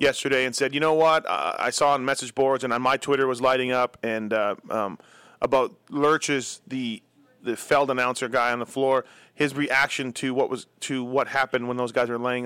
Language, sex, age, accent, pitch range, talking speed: English, male, 30-49, American, 125-145 Hz, 215 wpm